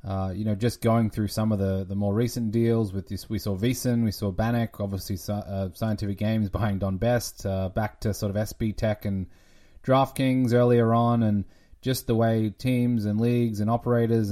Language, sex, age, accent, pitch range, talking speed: English, male, 20-39, Australian, 105-115 Hz, 200 wpm